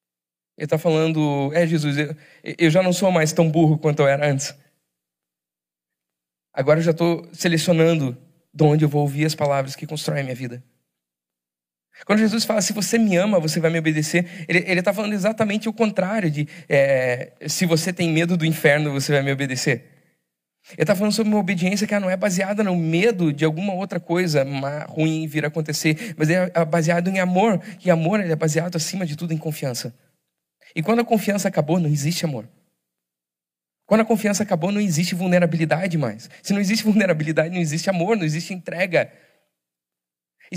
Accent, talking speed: Brazilian, 185 wpm